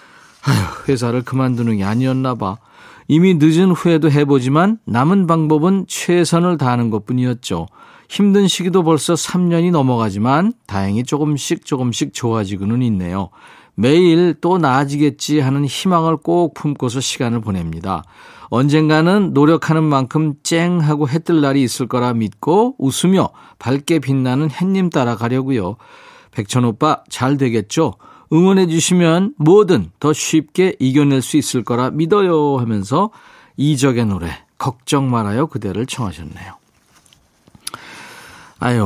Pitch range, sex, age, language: 120-165 Hz, male, 40-59, Korean